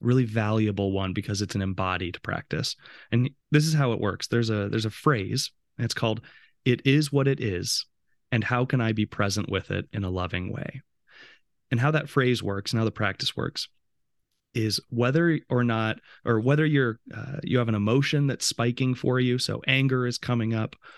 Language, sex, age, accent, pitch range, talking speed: English, male, 30-49, American, 105-130 Hz, 200 wpm